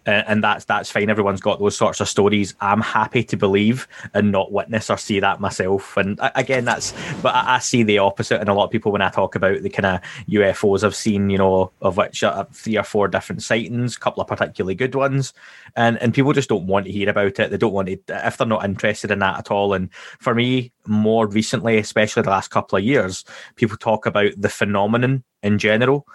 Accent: British